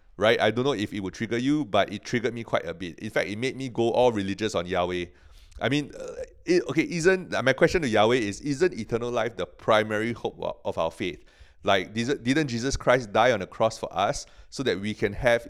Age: 30-49